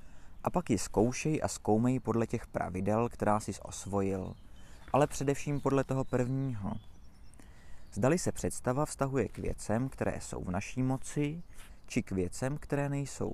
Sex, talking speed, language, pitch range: male, 150 wpm, Czech, 100-125 Hz